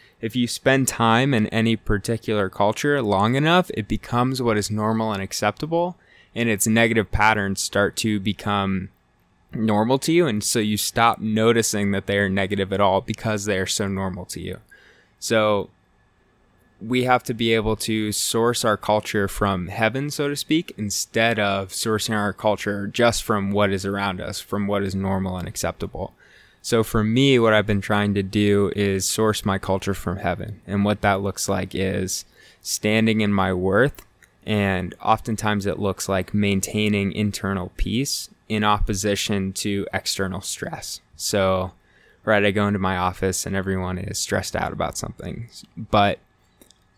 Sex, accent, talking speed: male, American, 165 wpm